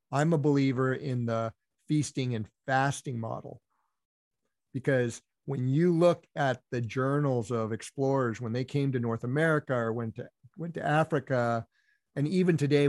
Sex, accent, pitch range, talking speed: male, American, 125-150 Hz, 155 wpm